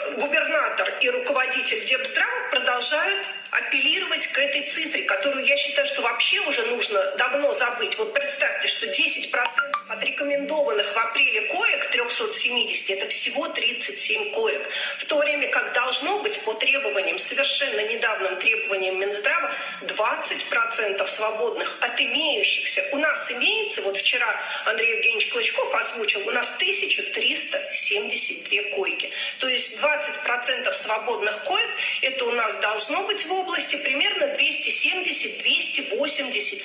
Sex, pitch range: female, 240-385 Hz